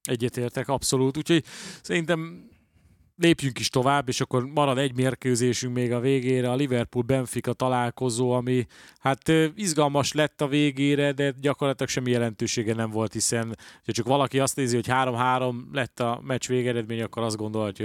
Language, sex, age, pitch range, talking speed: Hungarian, male, 30-49, 110-135 Hz, 155 wpm